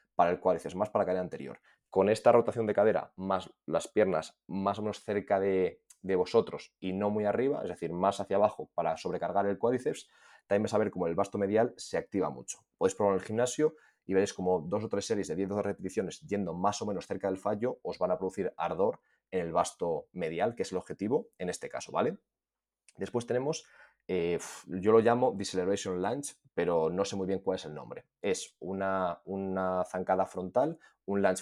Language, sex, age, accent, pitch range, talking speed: Spanish, male, 20-39, Spanish, 95-115 Hz, 210 wpm